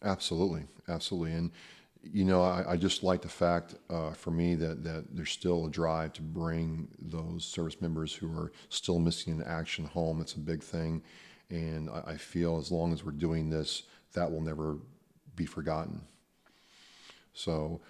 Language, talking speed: English, 175 wpm